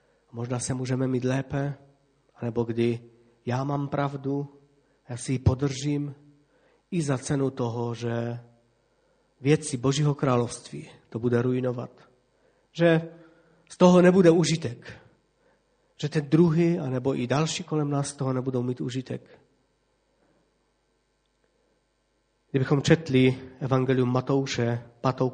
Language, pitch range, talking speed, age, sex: Czech, 130-150 Hz, 115 wpm, 40-59, male